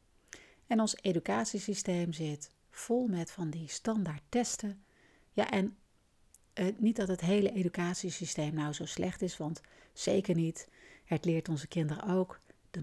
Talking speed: 145 wpm